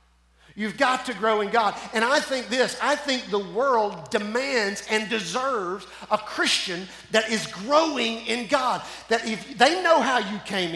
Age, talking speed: 40-59, 175 wpm